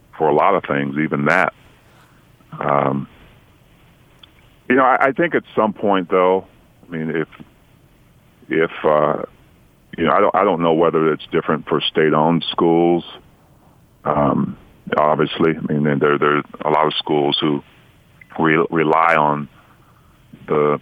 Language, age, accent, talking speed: English, 40-59, American, 145 wpm